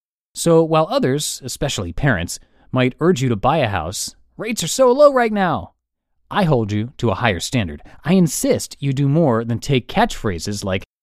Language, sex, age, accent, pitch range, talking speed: English, male, 30-49, American, 120-175 Hz, 185 wpm